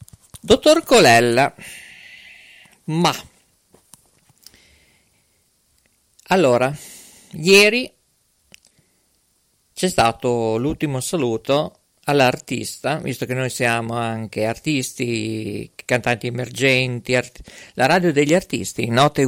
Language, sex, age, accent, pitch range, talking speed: Italian, male, 50-69, native, 120-165 Hz, 75 wpm